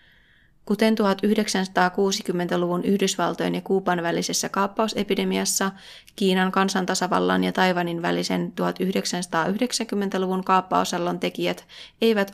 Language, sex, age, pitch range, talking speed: Finnish, female, 20-39, 175-205 Hz, 80 wpm